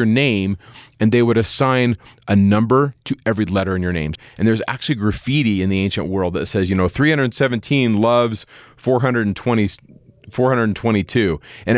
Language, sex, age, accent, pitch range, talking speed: English, male, 30-49, American, 95-130 Hz, 155 wpm